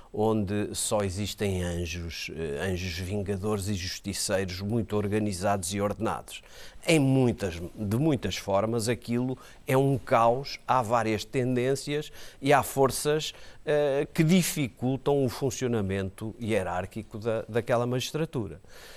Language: Portuguese